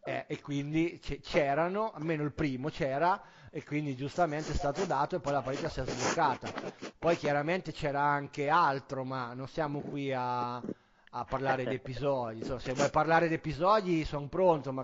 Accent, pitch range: native, 130-155 Hz